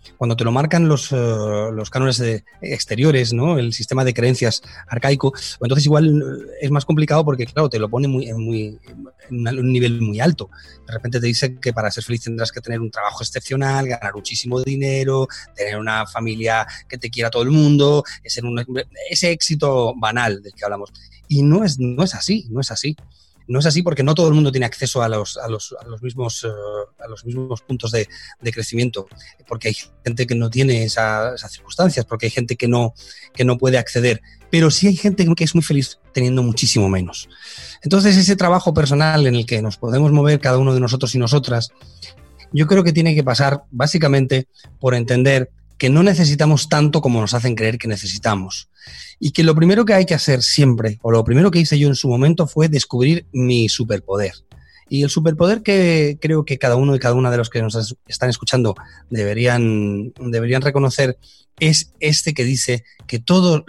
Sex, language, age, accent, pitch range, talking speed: male, Spanish, 30-49, Spanish, 115-145 Hz, 200 wpm